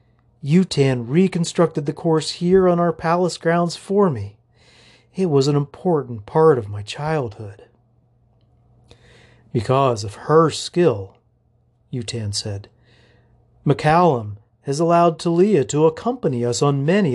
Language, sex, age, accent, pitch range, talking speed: English, male, 40-59, American, 120-170 Hz, 120 wpm